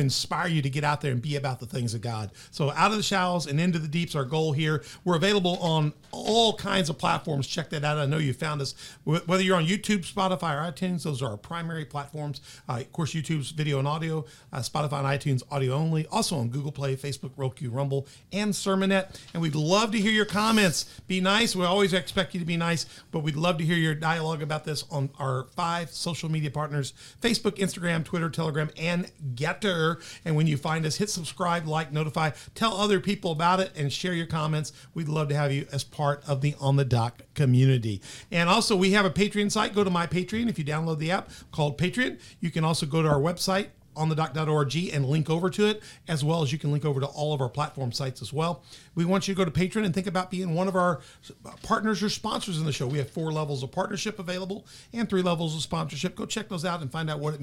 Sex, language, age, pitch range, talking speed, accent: male, English, 50-69, 145-185 Hz, 240 wpm, American